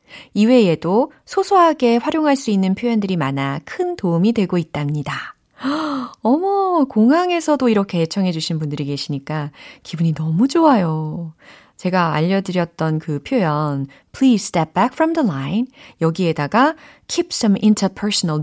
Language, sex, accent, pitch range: Korean, female, native, 160-265 Hz